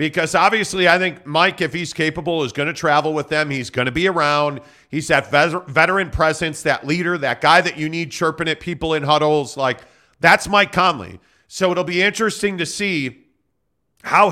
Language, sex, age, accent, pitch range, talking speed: English, male, 40-59, American, 145-180 Hz, 195 wpm